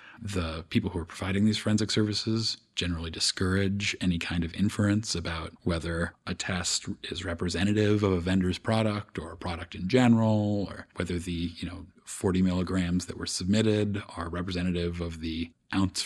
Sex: male